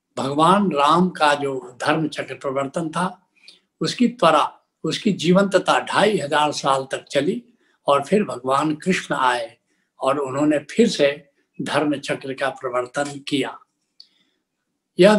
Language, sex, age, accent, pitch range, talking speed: Hindi, male, 70-89, native, 140-185 Hz, 110 wpm